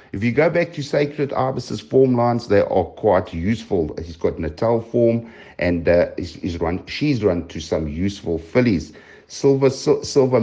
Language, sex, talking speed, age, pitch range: English, male, 180 wpm, 60-79, 95-130 Hz